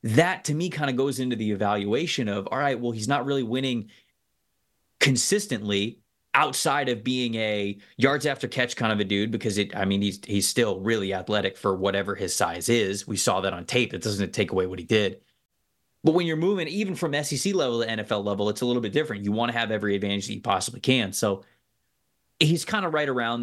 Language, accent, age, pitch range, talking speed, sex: English, American, 20-39, 105-130 Hz, 220 wpm, male